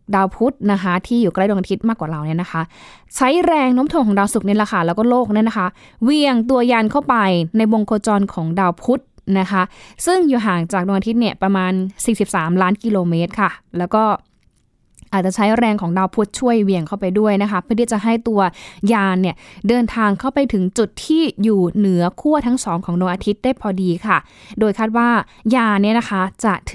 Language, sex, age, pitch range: Thai, female, 10-29, 190-235 Hz